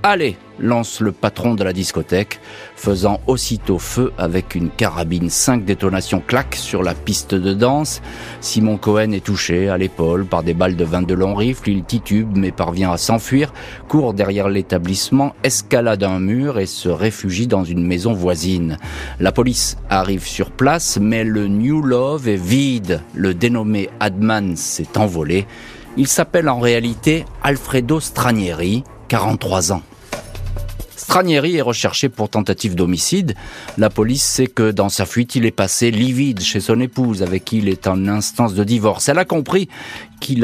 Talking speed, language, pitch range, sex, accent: 165 wpm, French, 95-120 Hz, male, French